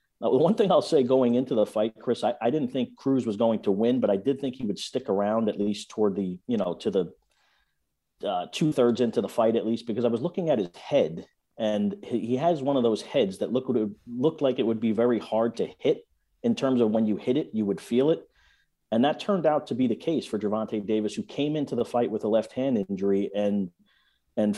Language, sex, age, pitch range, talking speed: English, male, 40-59, 105-130 Hz, 245 wpm